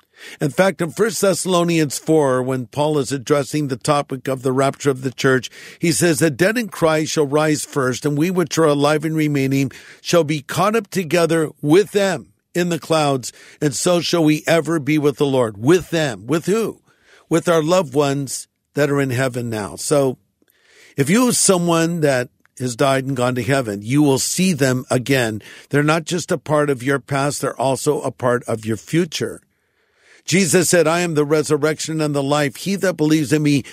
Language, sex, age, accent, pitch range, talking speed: English, male, 50-69, American, 135-170 Hz, 200 wpm